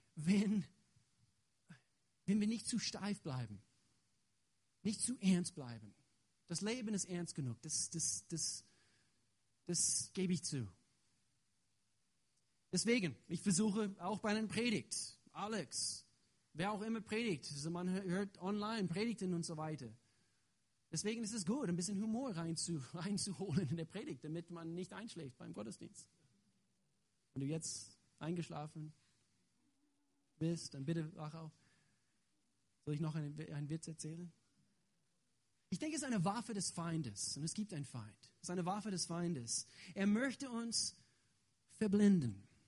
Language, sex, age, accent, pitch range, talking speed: German, male, 40-59, German, 125-200 Hz, 140 wpm